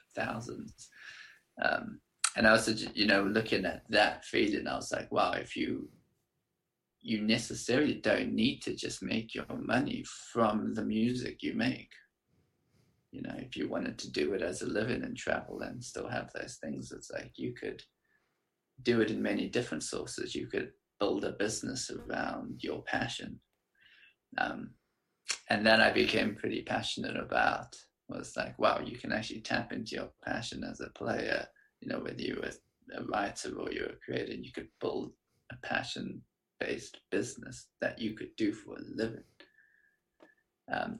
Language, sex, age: English, male, 20-39